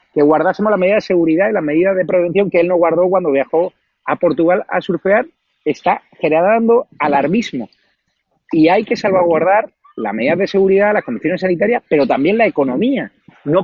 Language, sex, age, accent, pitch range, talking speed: Spanish, male, 40-59, Spanish, 135-200 Hz, 175 wpm